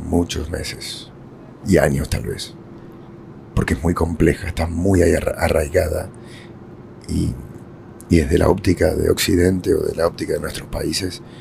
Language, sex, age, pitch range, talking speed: English, male, 50-69, 80-90 Hz, 140 wpm